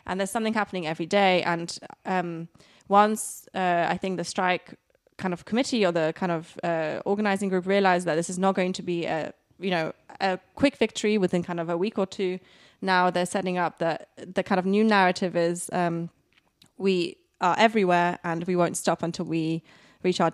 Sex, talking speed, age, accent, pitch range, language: female, 200 wpm, 20-39, British, 175-200 Hz, English